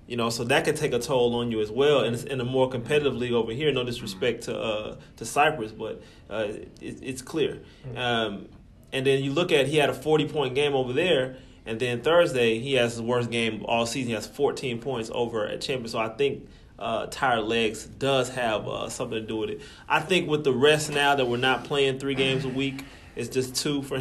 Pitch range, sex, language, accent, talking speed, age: 115-140 Hz, male, English, American, 240 wpm, 30-49